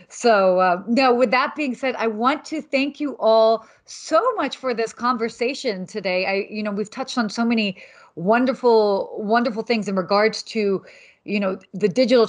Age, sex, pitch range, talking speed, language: 30-49, female, 205-250 Hz, 185 wpm, English